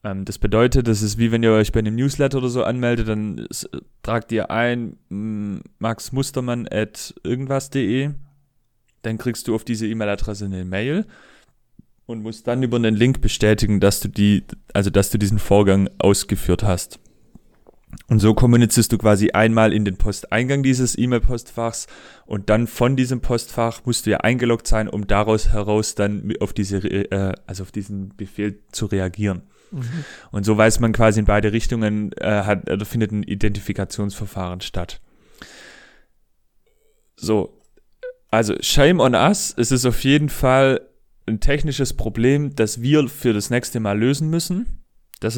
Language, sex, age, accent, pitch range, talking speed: German, male, 30-49, German, 105-125 Hz, 155 wpm